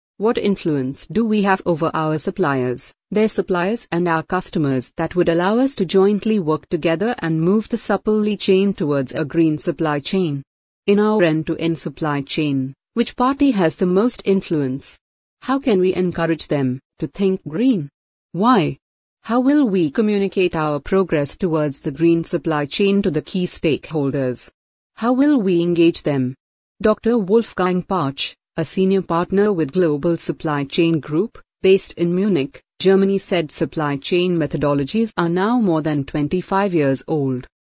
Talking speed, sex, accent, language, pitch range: 155 wpm, female, Indian, English, 155-195 Hz